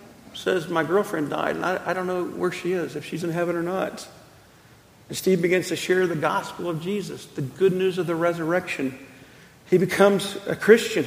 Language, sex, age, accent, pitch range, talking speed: English, male, 50-69, American, 155-190 Hz, 200 wpm